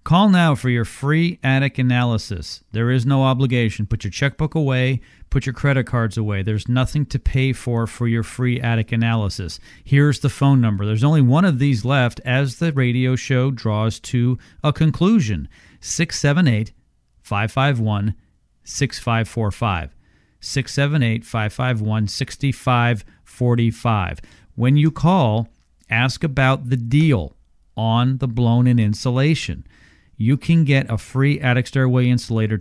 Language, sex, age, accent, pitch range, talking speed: English, male, 40-59, American, 110-135 Hz, 125 wpm